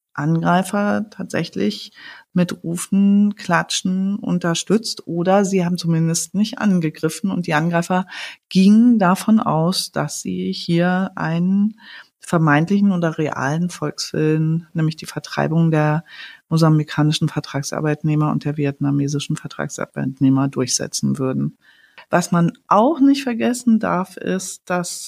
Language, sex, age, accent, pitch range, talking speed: German, female, 40-59, German, 170-205 Hz, 110 wpm